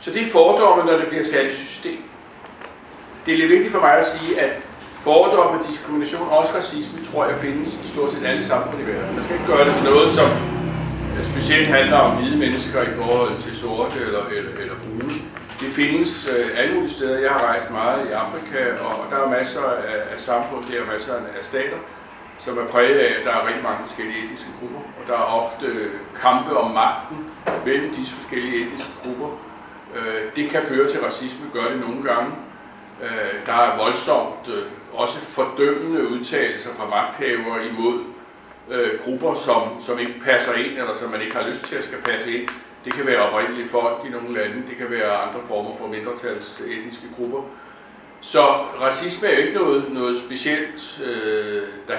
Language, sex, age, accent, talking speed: English, male, 60-79, Danish, 180 wpm